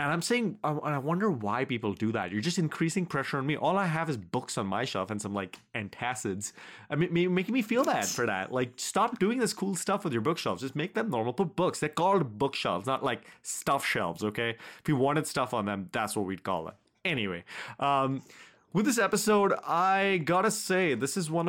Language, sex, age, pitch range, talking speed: English, male, 30-49, 110-160 Hz, 225 wpm